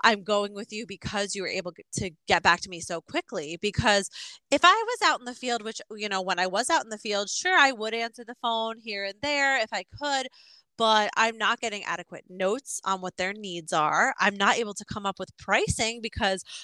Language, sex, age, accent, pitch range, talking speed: English, female, 20-39, American, 185-240 Hz, 235 wpm